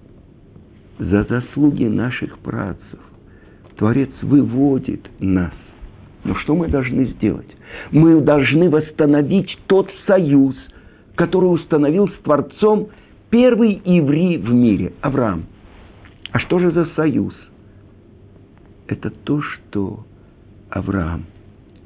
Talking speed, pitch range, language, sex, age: 100 wpm, 115-175 Hz, Russian, male, 50-69